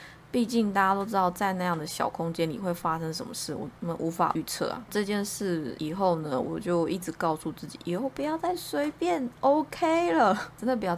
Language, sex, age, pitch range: Chinese, female, 20-39, 170-235 Hz